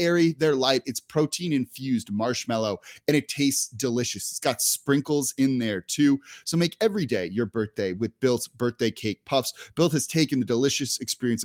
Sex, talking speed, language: male, 180 wpm, English